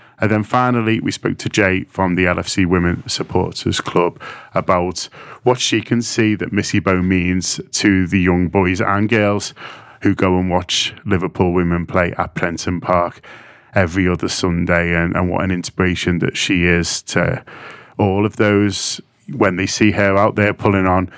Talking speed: 175 wpm